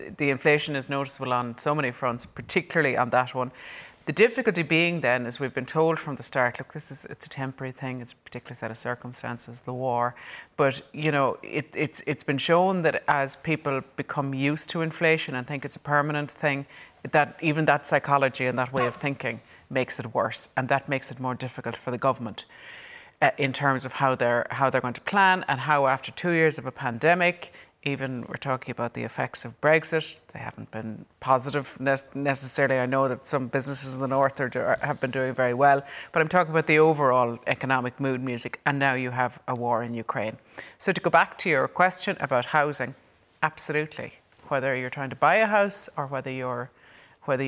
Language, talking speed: English, 205 wpm